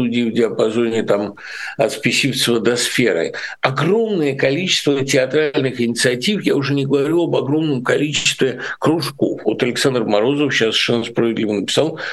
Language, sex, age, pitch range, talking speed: Russian, male, 60-79, 110-145 Hz, 130 wpm